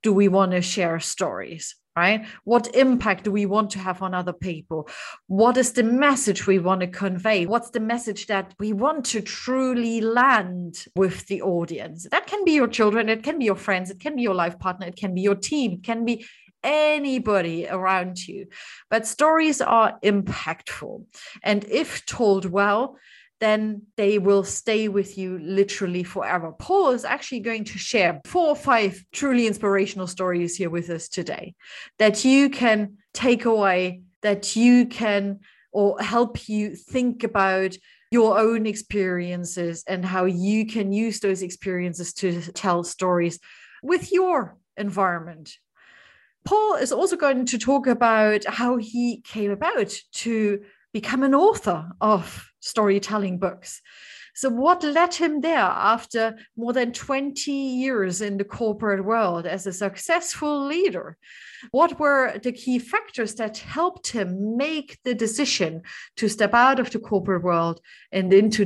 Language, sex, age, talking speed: English, female, 30-49, 155 wpm